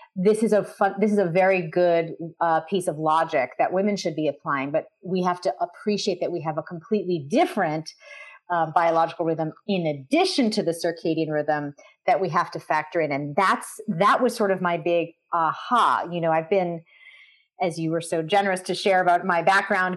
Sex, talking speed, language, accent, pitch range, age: female, 200 wpm, English, American, 160-205 Hz, 30-49